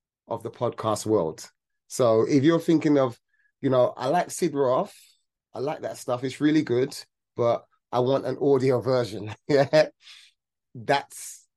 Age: 30-49